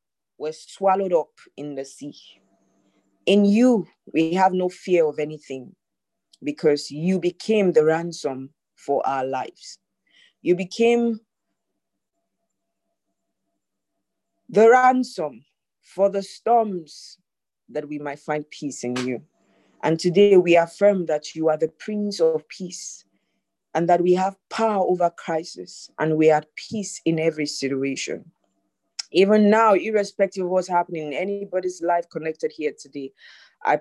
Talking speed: 135 wpm